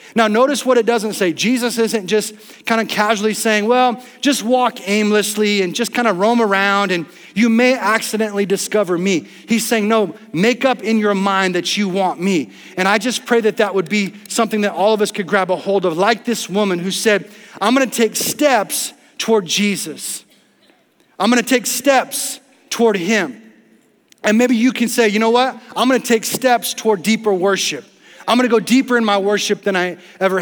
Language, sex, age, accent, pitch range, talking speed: English, male, 30-49, American, 200-235 Hz, 200 wpm